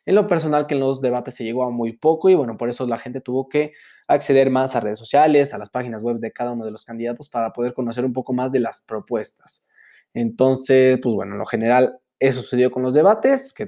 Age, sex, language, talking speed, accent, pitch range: 20-39, male, Spanish, 245 wpm, Mexican, 120-145 Hz